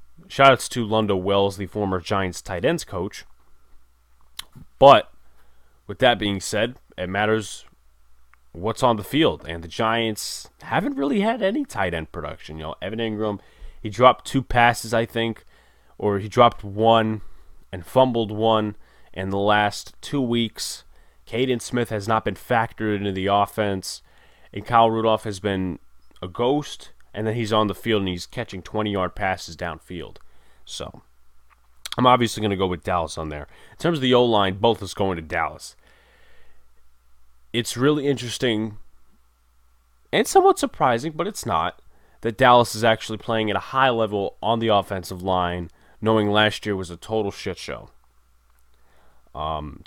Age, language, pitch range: 20-39, English, 85-115 Hz